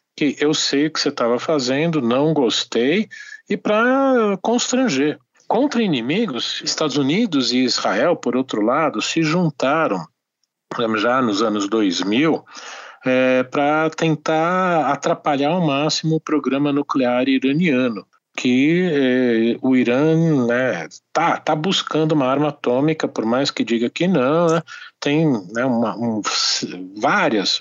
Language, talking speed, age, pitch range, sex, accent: Portuguese, 130 wpm, 40-59, 130-170 Hz, male, Brazilian